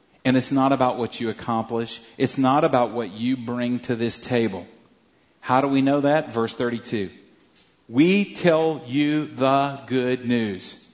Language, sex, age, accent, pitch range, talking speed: English, male, 40-59, American, 130-180 Hz, 160 wpm